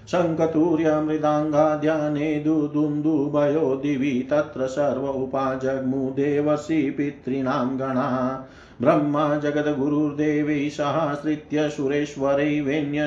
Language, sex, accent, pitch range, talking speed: Hindi, male, native, 135-150 Hz, 70 wpm